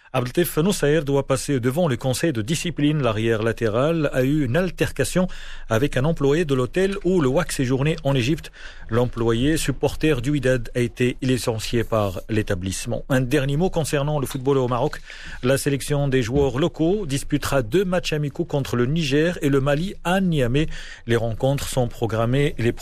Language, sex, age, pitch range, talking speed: Arabic, male, 40-59, 120-150 Hz, 165 wpm